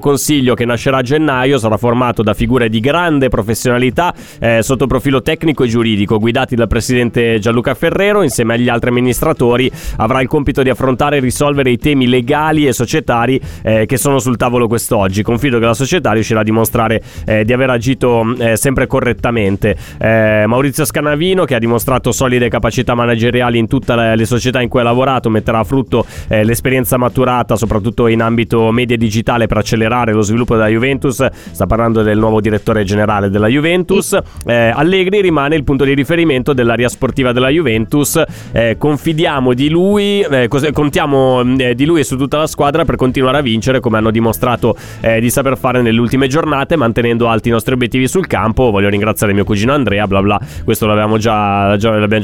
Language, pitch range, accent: Italian, 110-135 Hz, native